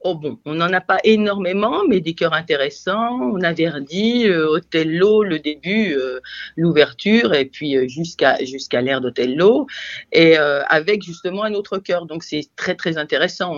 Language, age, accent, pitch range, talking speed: French, 50-69, French, 145-190 Hz, 175 wpm